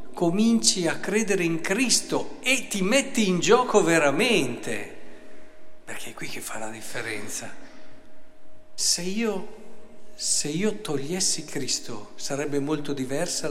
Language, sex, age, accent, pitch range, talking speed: Italian, male, 50-69, native, 150-220 Hz, 120 wpm